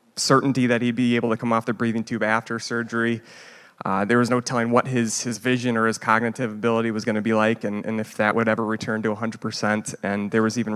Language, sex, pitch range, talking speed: English, male, 110-120 Hz, 250 wpm